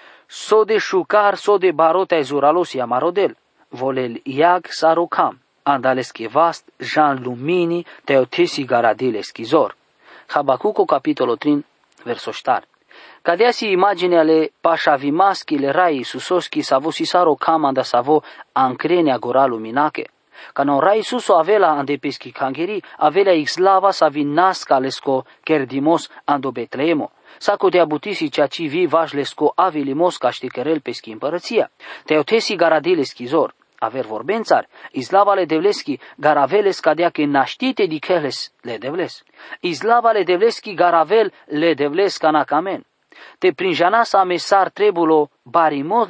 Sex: male